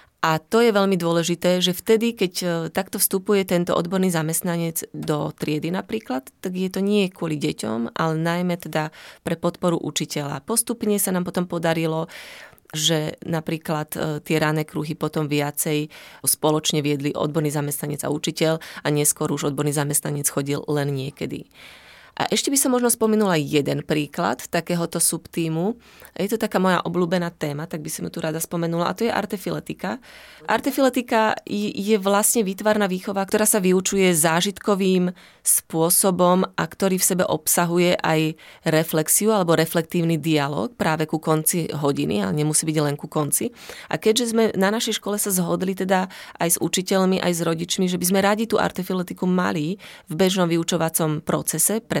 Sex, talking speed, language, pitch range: female, 160 wpm, Slovak, 155-195 Hz